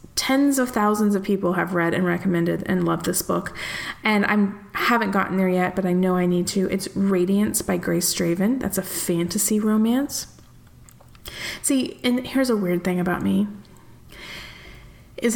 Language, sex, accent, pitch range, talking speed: English, female, American, 185-250 Hz, 170 wpm